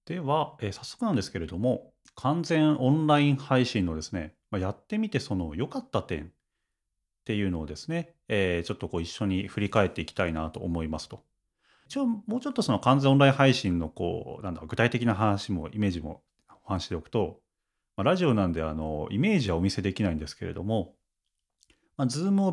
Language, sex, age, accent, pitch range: Japanese, male, 40-59, native, 90-135 Hz